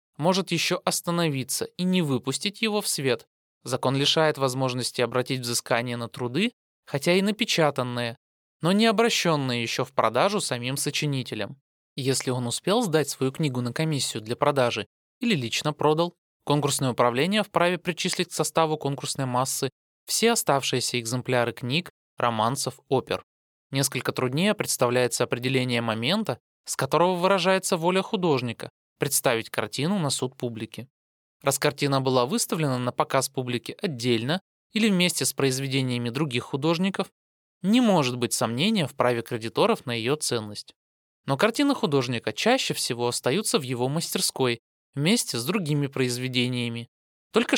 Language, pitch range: Russian, 125-175 Hz